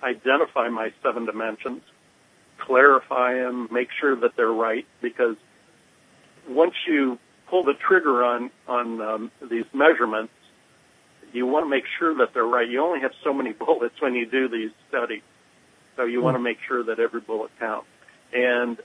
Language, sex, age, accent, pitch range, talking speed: English, male, 50-69, American, 115-130 Hz, 165 wpm